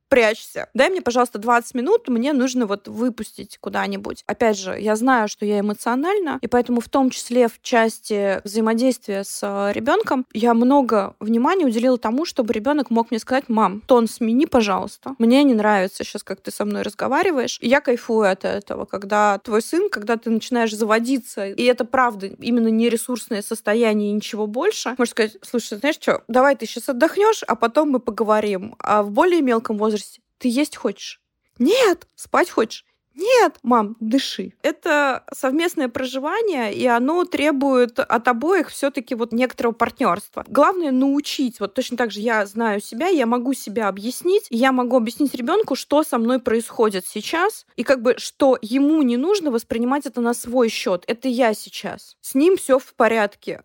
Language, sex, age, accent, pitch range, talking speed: Russian, female, 20-39, native, 225-275 Hz, 170 wpm